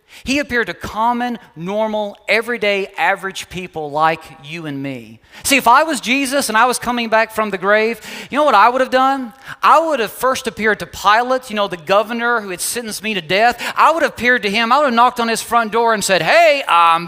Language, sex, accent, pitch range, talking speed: English, male, American, 150-235 Hz, 235 wpm